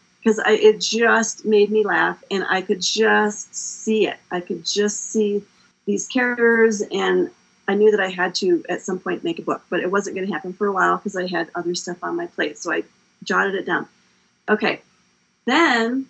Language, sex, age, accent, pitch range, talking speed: English, female, 40-59, American, 185-220 Hz, 205 wpm